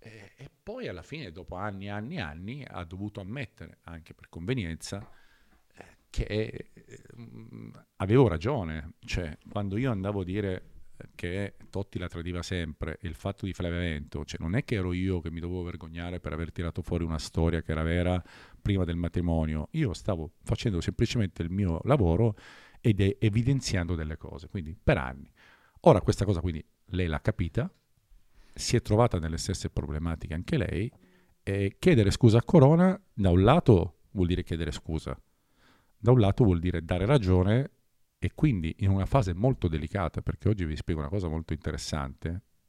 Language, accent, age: Italian, native, 50-69